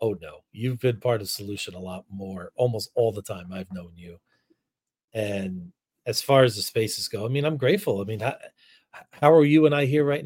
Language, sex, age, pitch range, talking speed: English, male, 40-59, 110-130 Hz, 220 wpm